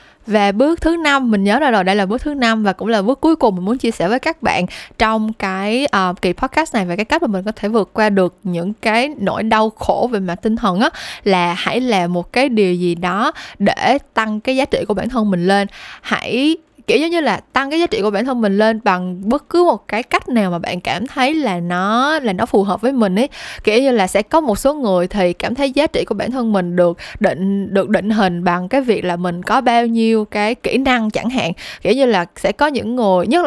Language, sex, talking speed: Vietnamese, female, 260 wpm